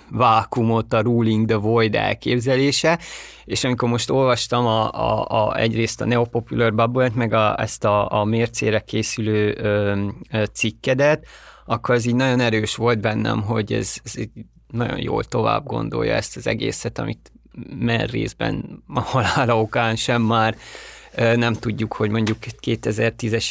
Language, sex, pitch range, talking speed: Hungarian, male, 110-130 Hz, 145 wpm